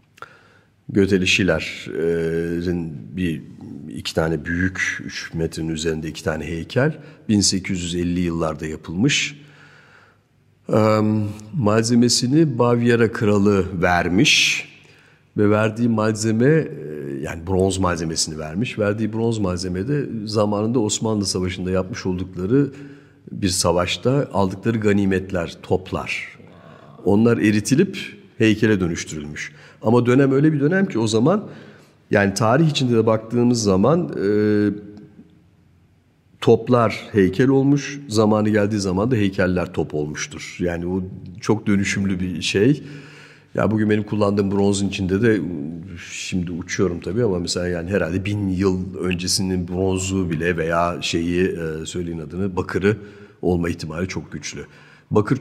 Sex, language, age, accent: male, Turkish, 50-69, native